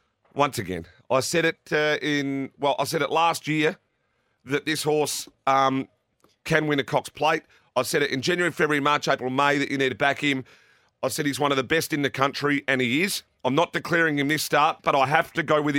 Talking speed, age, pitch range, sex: 235 wpm, 40-59, 130-155 Hz, male